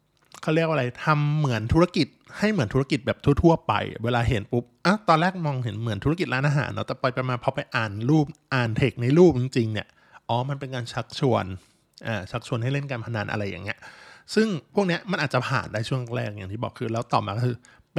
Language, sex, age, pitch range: Thai, male, 20-39, 115-150 Hz